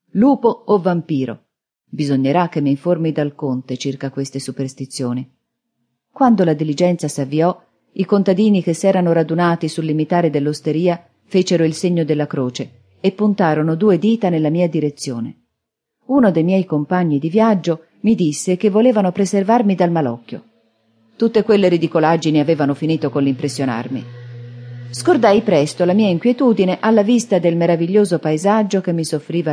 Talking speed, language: 140 wpm, Italian